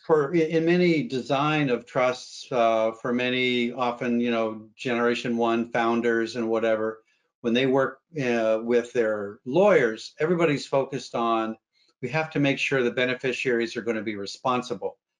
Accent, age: American, 50-69